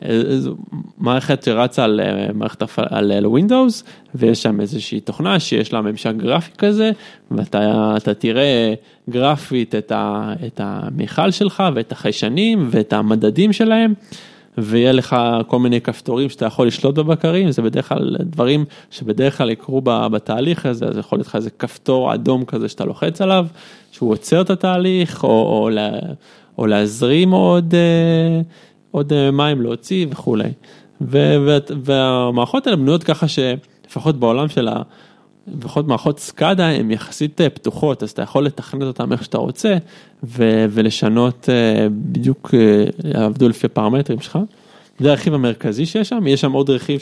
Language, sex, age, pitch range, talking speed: Hebrew, male, 20-39, 115-170 Hz, 140 wpm